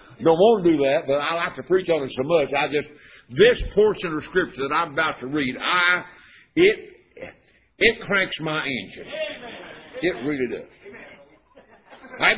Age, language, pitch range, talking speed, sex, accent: 60-79, English, 135-215 Hz, 170 wpm, male, American